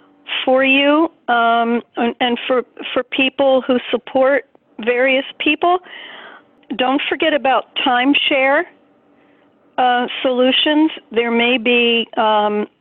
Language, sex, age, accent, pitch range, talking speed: English, female, 50-69, American, 220-265 Hz, 100 wpm